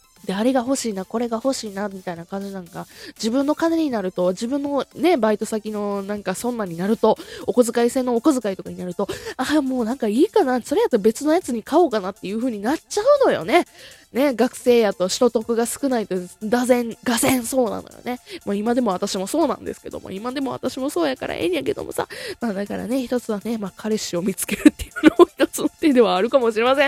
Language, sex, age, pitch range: Japanese, female, 20-39, 210-300 Hz